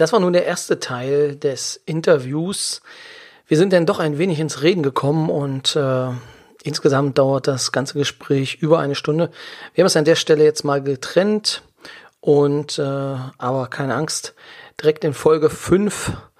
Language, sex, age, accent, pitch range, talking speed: German, male, 40-59, German, 135-160 Hz, 165 wpm